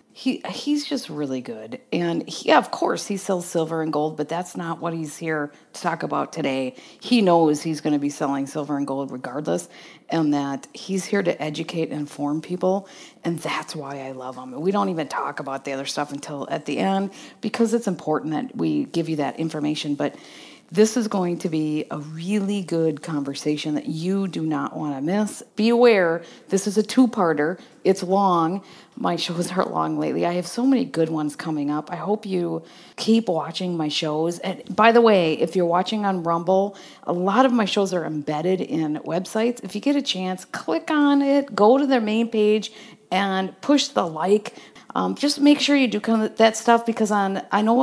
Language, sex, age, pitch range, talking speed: English, female, 40-59, 155-220 Hz, 205 wpm